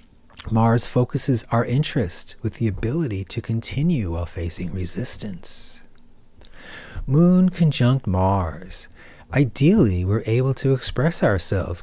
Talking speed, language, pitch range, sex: 105 wpm, English, 95-130 Hz, male